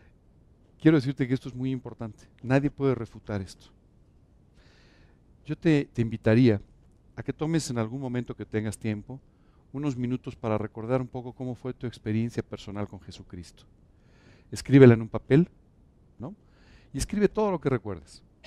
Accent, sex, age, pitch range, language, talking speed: Mexican, male, 50-69, 105-130 Hz, Spanish, 155 wpm